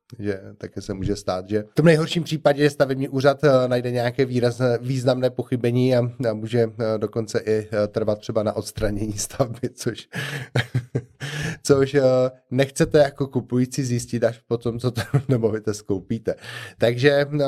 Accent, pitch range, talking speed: native, 105-130 Hz, 165 wpm